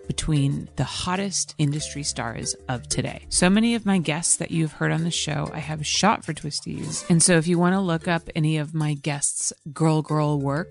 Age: 30-49